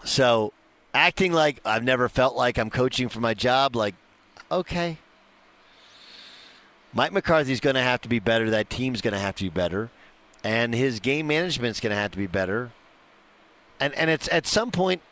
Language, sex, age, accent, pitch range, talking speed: English, male, 50-69, American, 110-155 Hz, 185 wpm